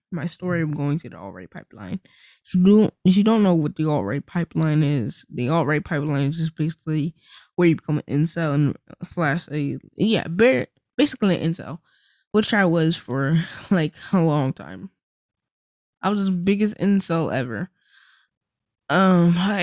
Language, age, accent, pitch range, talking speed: English, 10-29, American, 160-195 Hz, 160 wpm